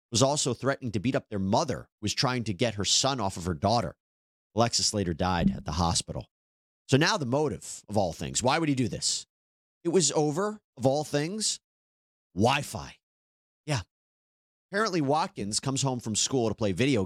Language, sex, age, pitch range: English, male, 30-49, 90-130 Hz